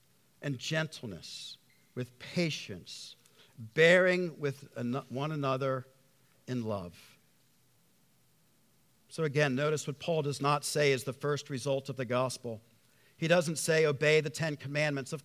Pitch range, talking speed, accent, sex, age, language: 130-165 Hz, 130 wpm, American, male, 50-69, English